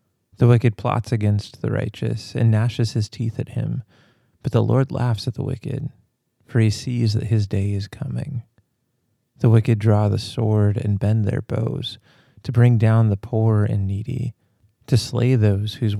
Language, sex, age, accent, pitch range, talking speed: English, male, 30-49, American, 105-125 Hz, 175 wpm